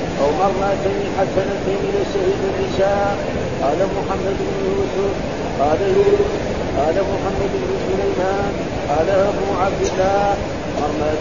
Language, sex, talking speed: Arabic, male, 95 wpm